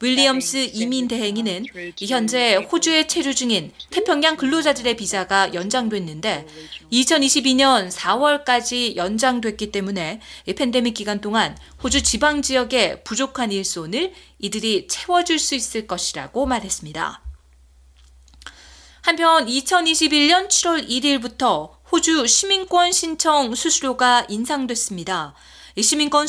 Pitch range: 210-305 Hz